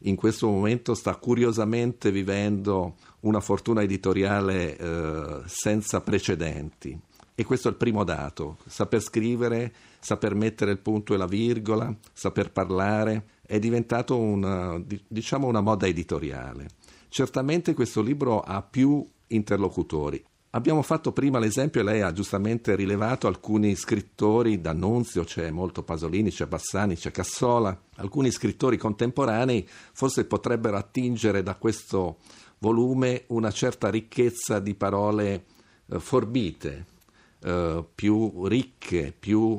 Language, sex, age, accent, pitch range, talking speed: Italian, male, 50-69, native, 95-120 Hz, 125 wpm